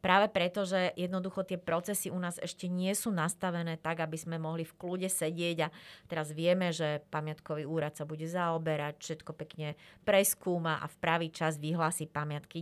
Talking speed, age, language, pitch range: 175 wpm, 30-49, Slovak, 160-185 Hz